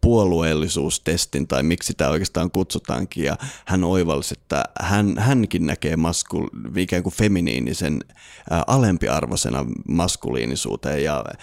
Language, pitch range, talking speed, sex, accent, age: Finnish, 85-105 Hz, 105 wpm, male, native, 30-49